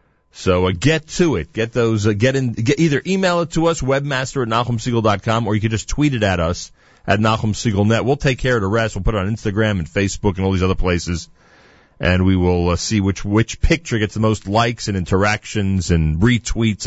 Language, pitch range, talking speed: English, 90-115 Hz, 225 wpm